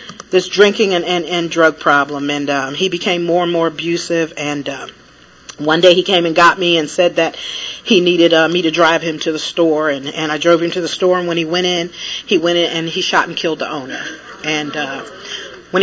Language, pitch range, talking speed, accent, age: English, 170-215 Hz, 240 wpm, American, 40-59